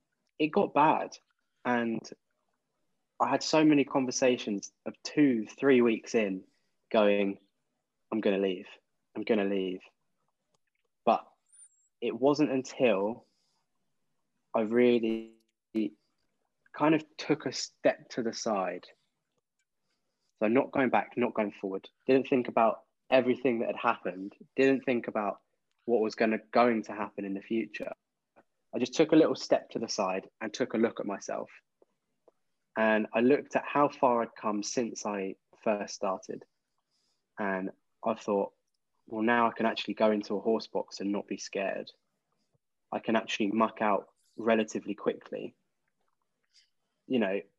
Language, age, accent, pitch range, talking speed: English, 20-39, British, 100-125 Hz, 145 wpm